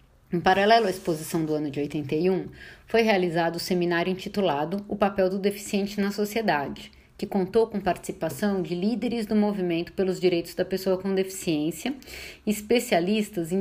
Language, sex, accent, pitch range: Portuguese, female, Brazilian, 170-210 Hz